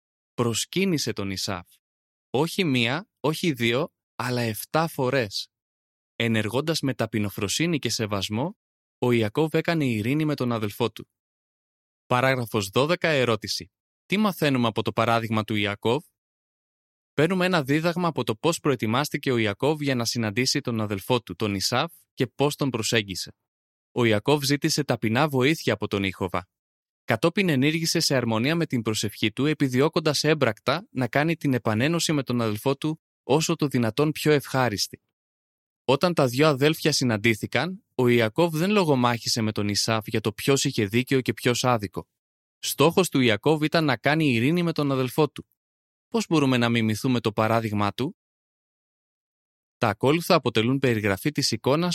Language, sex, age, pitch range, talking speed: Greek, male, 20-39, 110-150 Hz, 150 wpm